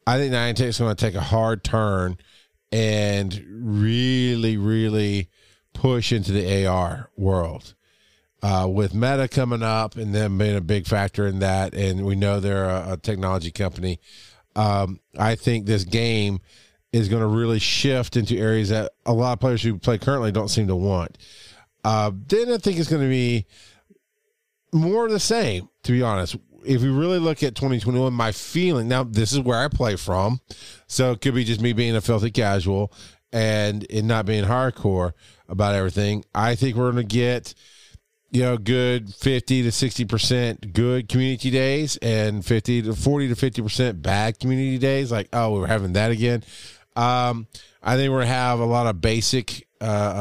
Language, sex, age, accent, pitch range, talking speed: English, male, 40-59, American, 100-125 Hz, 185 wpm